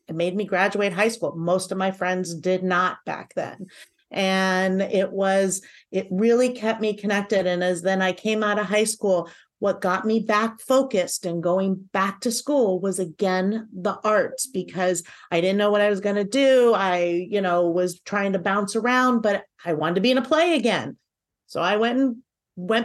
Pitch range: 190-230 Hz